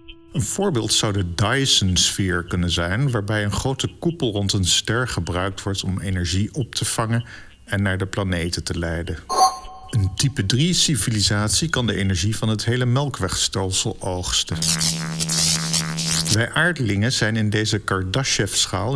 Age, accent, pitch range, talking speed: 50-69, Dutch, 95-130 Hz, 140 wpm